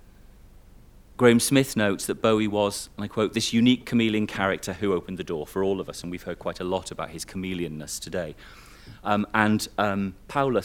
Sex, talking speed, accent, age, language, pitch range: male, 195 wpm, British, 40-59, English, 90-125 Hz